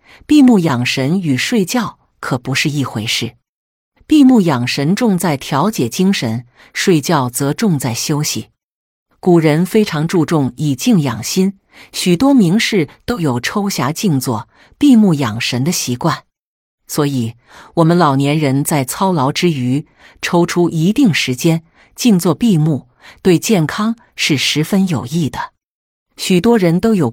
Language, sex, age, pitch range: Chinese, female, 50-69, 135-190 Hz